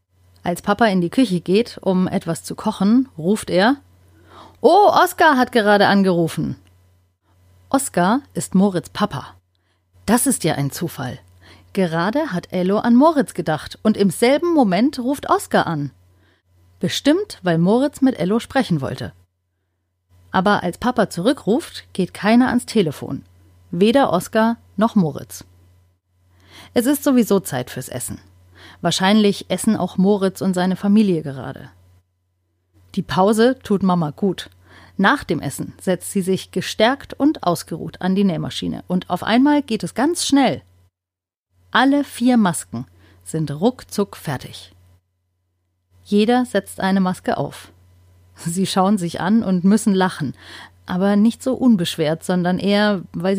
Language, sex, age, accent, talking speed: German, female, 30-49, German, 135 wpm